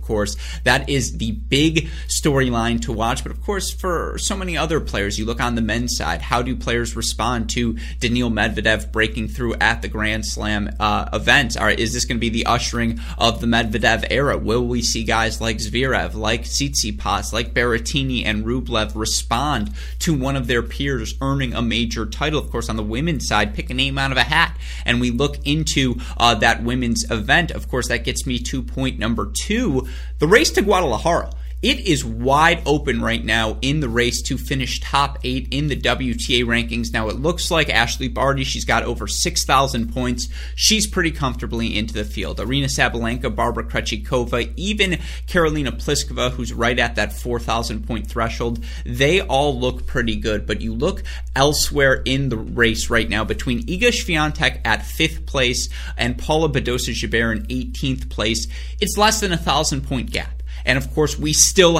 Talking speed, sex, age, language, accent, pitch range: 185 wpm, male, 20-39, English, American, 110-135 Hz